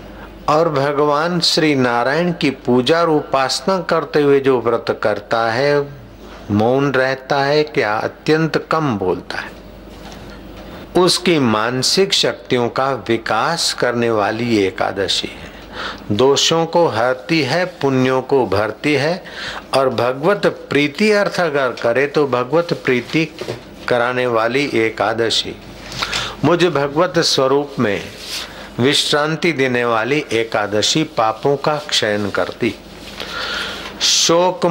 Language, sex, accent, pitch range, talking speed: Hindi, male, native, 120-160 Hz, 110 wpm